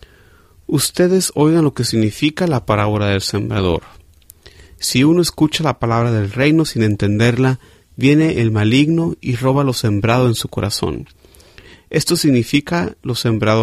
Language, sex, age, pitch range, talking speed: Spanish, male, 40-59, 100-140 Hz, 140 wpm